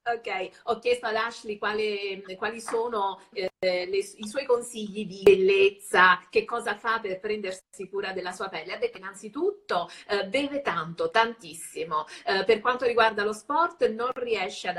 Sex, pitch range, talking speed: female, 190-295 Hz, 160 wpm